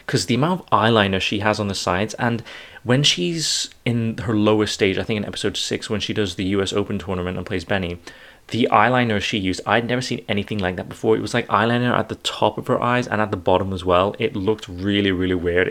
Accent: British